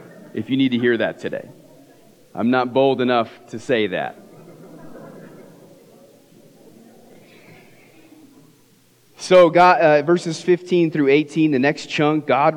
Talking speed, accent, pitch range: 120 wpm, American, 120-160 Hz